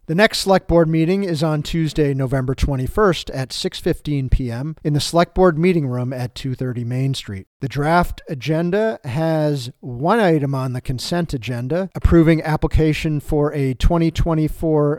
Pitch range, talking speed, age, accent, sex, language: 140-180 Hz, 150 wpm, 40-59, American, male, English